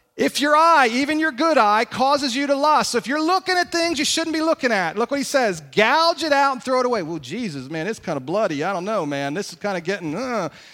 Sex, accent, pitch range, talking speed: male, American, 195-265 Hz, 280 wpm